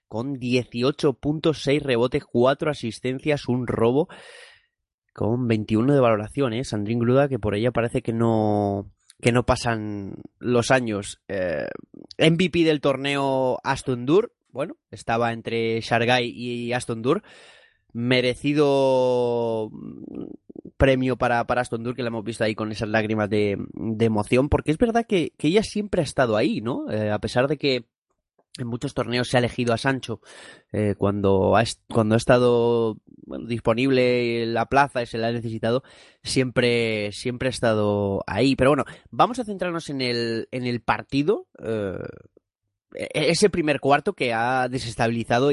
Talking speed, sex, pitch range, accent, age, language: 155 wpm, male, 115-135 Hz, Spanish, 20-39, Spanish